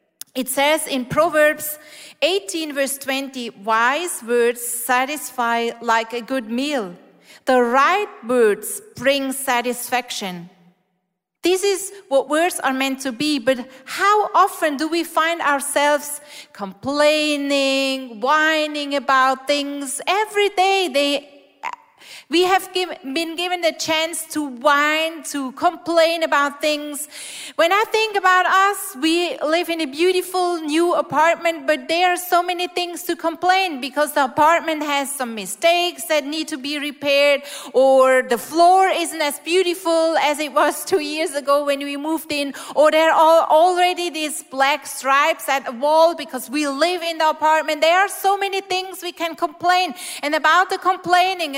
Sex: female